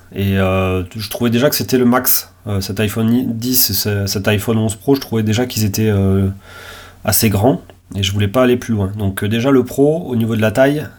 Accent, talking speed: French, 240 wpm